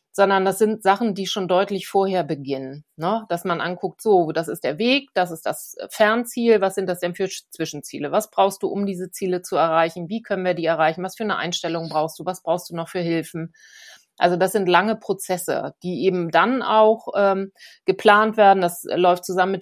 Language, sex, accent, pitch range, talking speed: German, female, German, 175-215 Hz, 210 wpm